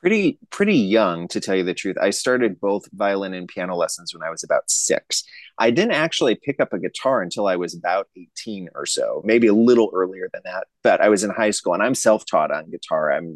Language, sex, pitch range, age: English, male, 90-110 Hz, 30-49